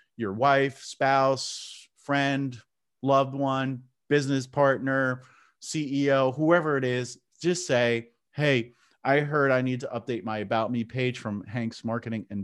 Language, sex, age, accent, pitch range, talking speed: English, male, 40-59, American, 110-135 Hz, 140 wpm